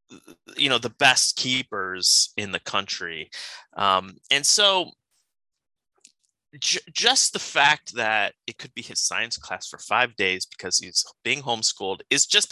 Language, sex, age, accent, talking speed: English, male, 30-49, American, 145 wpm